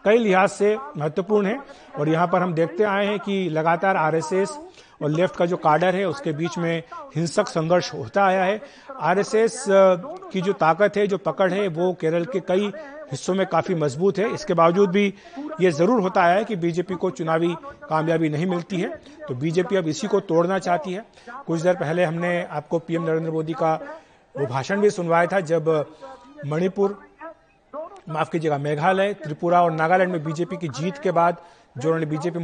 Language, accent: Hindi, native